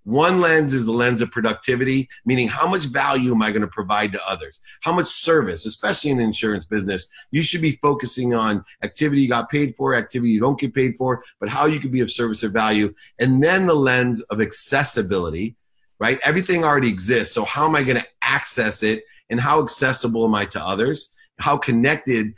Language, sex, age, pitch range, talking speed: English, male, 30-49, 110-140 Hz, 200 wpm